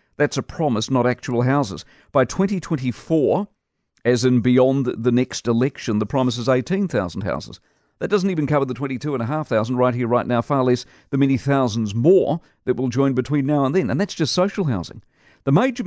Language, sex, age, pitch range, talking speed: English, male, 50-69, 120-150 Hz, 185 wpm